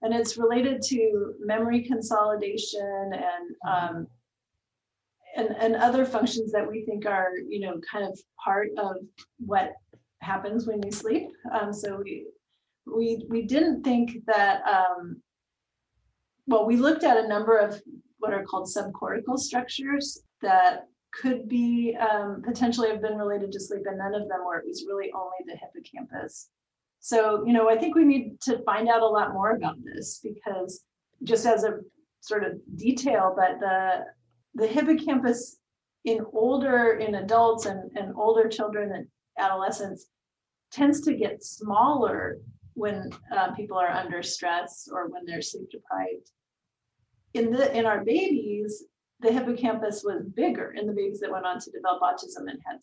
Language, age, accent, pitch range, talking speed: English, 30-49, American, 195-240 Hz, 160 wpm